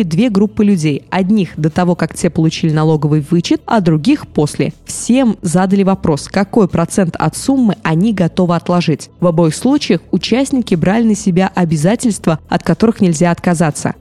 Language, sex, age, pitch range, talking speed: Russian, female, 20-39, 165-215 Hz, 155 wpm